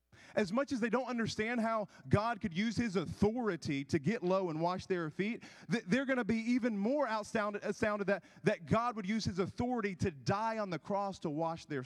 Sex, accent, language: male, American, English